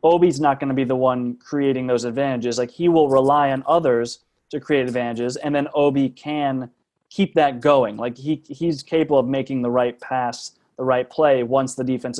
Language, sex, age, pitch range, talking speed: English, male, 20-39, 125-145 Hz, 200 wpm